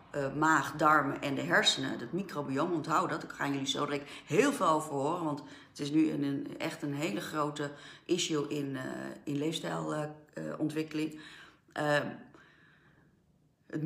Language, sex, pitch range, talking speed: Dutch, female, 140-165 Hz, 160 wpm